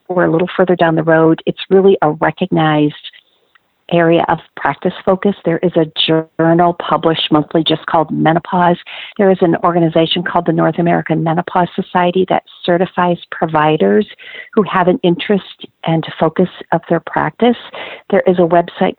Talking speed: 160 wpm